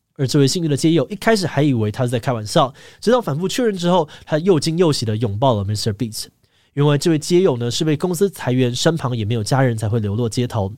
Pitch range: 115-160 Hz